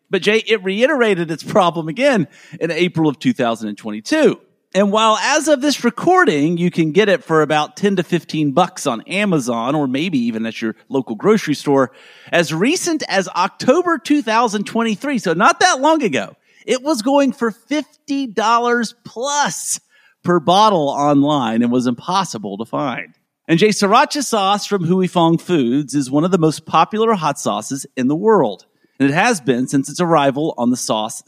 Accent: American